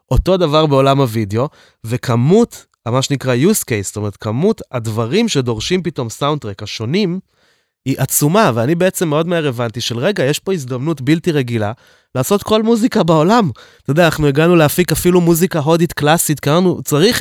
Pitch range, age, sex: 120-165 Hz, 20-39, male